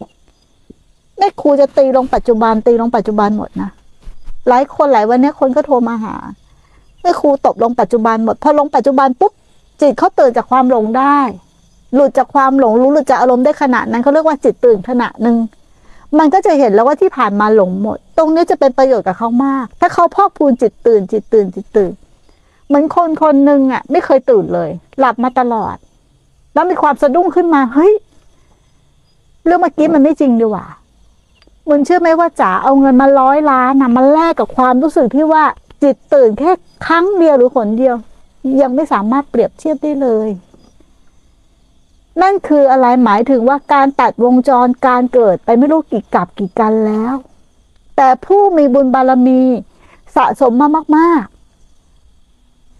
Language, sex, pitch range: Thai, female, 230-295 Hz